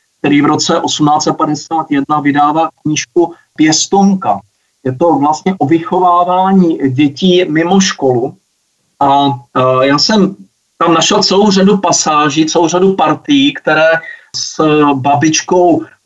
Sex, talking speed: male, 110 wpm